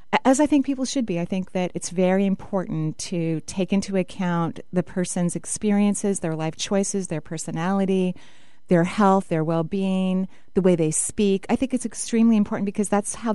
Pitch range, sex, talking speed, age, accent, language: 175-210 Hz, female, 180 wpm, 30-49, American, English